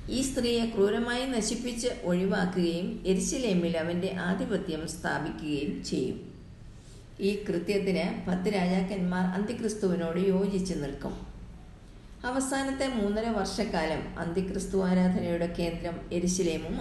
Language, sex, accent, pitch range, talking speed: Malayalam, female, native, 175-210 Hz, 85 wpm